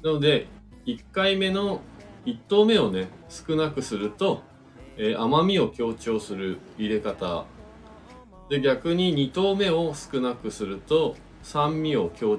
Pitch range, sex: 100-155 Hz, male